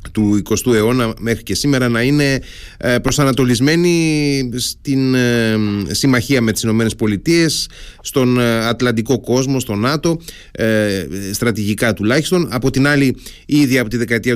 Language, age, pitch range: Greek, 30-49, 110-140 Hz